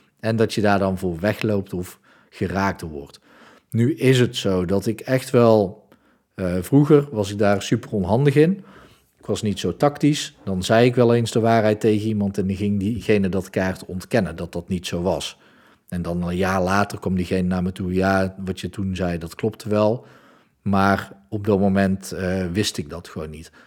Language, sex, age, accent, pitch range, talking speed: Dutch, male, 40-59, Dutch, 95-120 Hz, 205 wpm